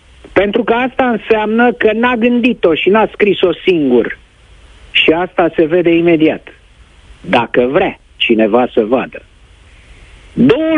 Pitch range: 145-235 Hz